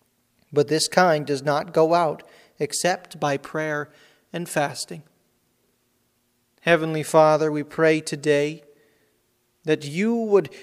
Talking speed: 115 wpm